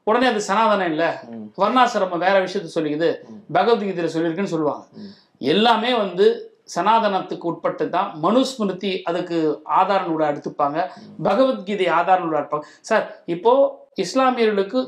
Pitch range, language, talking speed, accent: 195-255 Hz, Tamil, 100 wpm, native